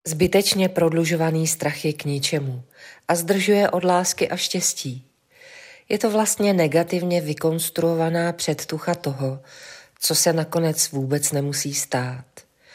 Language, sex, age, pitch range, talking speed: Czech, female, 40-59, 145-175 Hz, 120 wpm